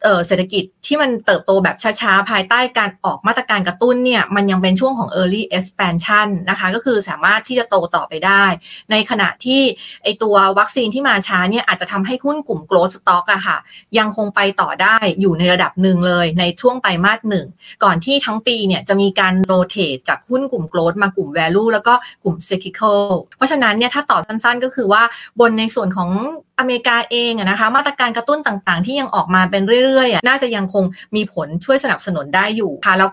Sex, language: female, Thai